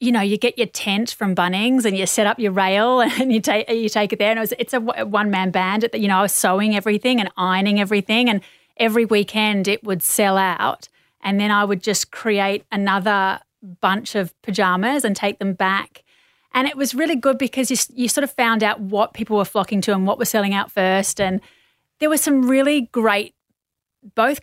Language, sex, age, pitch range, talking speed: English, female, 30-49, 195-235 Hz, 220 wpm